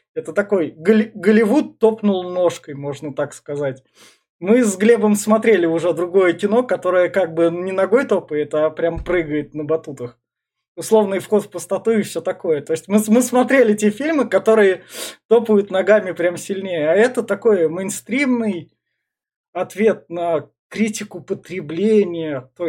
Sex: male